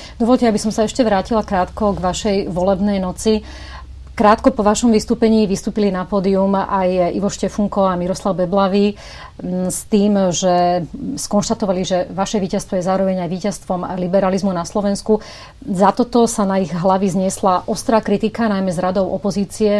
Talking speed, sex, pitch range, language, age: 155 wpm, female, 180-200 Hz, Slovak, 30-49